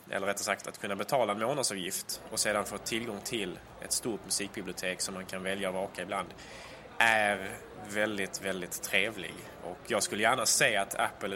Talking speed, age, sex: 180 wpm, 20-39, male